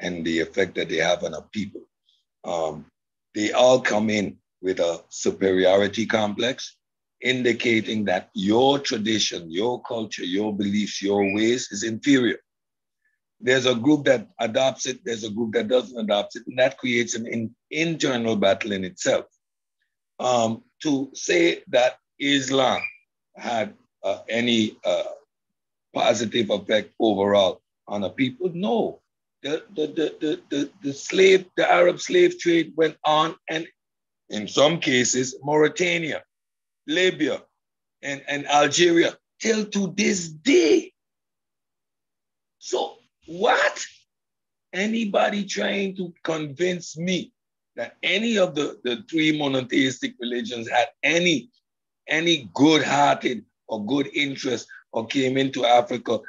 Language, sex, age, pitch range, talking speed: English, male, 60-79, 115-185 Hz, 125 wpm